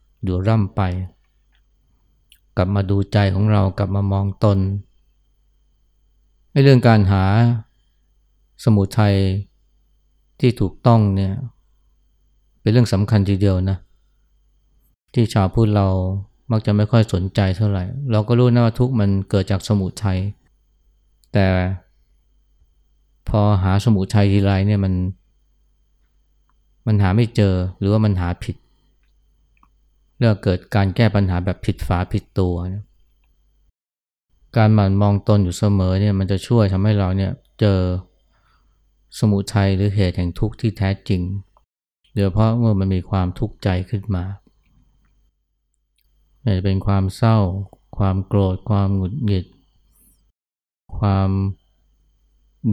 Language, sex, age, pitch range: Thai, male, 20-39, 90-105 Hz